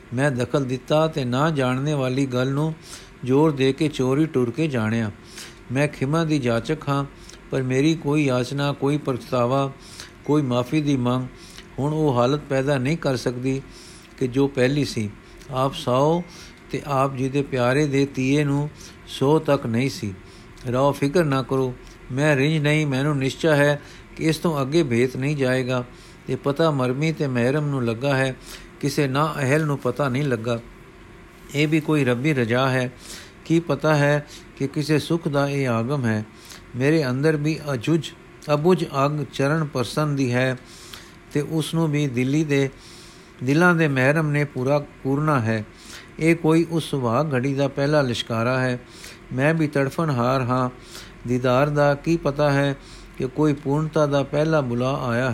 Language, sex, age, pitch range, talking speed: Punjabi, male, 50-69, 125-150 Hz, 165 wpm